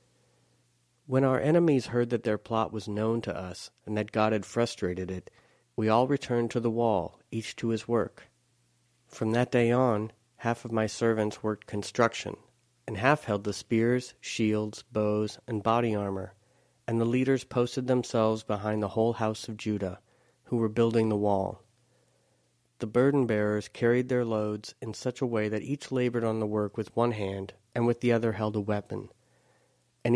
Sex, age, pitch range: male, 40-59, 105-120 Hz